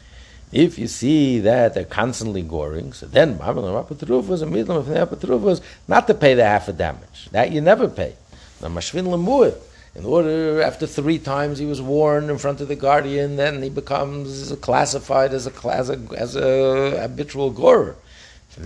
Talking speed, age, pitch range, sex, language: 145 wpm, 60-79, 90-140 Hz, male, English